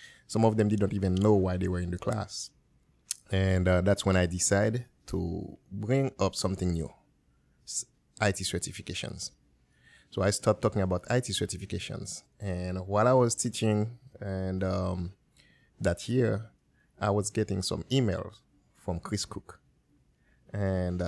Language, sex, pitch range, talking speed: English, male, 95-115 Hz, 145 wpm